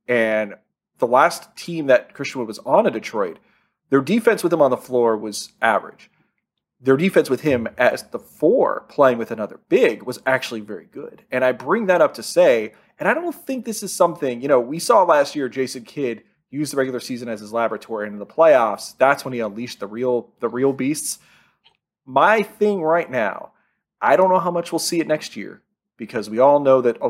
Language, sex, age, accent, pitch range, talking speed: English, male, 30-49, American, 120-170 Hz, 215 wpm